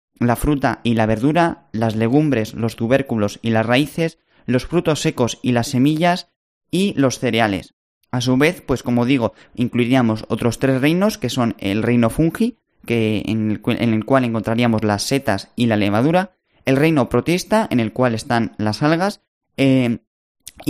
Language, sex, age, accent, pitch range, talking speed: Spanish, male, 20-39, Spanish, 115-145 Hz, 160 wpm